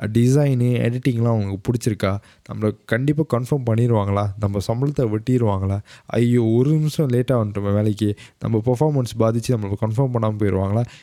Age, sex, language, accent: 20-39, male, Tamil, native